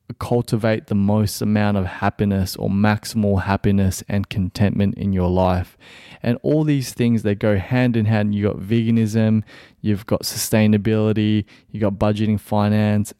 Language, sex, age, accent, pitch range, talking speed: English, male, 20-39, Australian, 100-115 Hz, 150 wpm